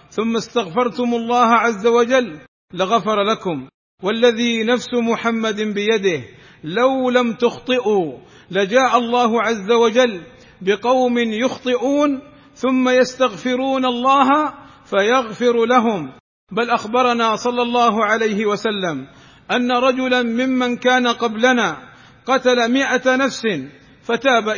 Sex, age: male, 40-59